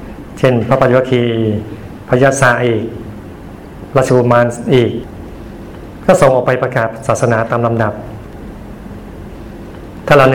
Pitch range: 110-130 Hz